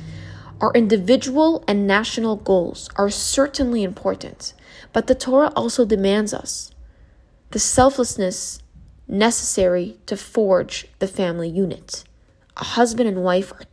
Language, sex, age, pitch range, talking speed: English, female, 20-39, 190-245 Hz, 120 wpm